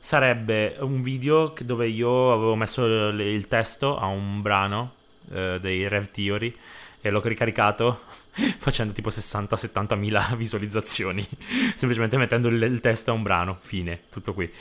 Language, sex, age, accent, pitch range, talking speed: Italian, male, 20-39, native, 100-125 Hz, 150 wpm